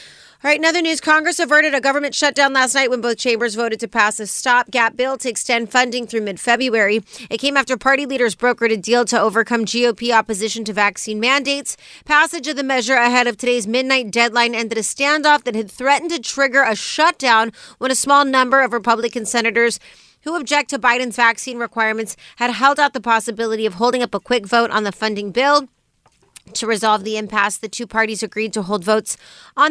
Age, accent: 30-49, American